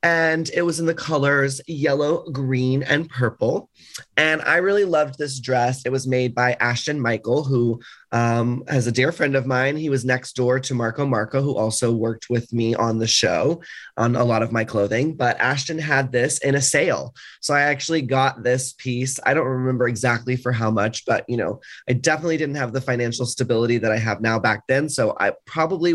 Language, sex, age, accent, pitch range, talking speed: English, male, 20-39, American, 120-145 Hz, 210 wpm